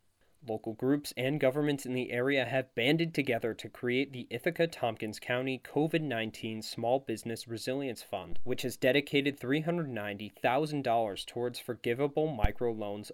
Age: 20-39